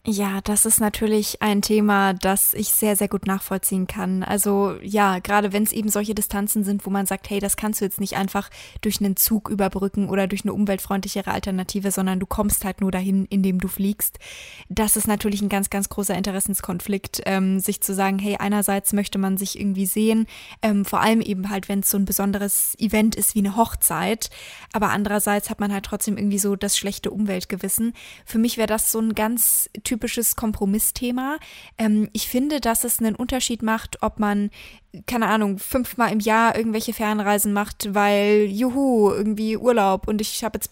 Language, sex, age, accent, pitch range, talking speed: German, female, 20-39, German, 200-220 Hz, 190 wpm